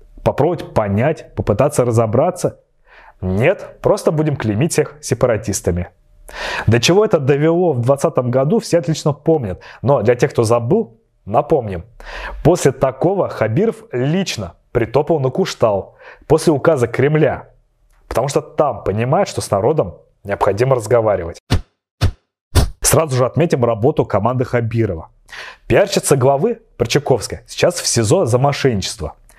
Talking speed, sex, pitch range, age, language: 120 wpm, male, 115-155 Hz, 30-49, Russian